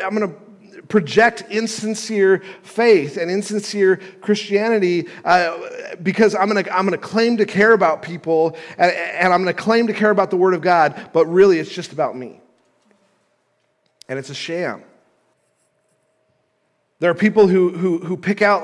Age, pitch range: 40-59, 145-200 Hz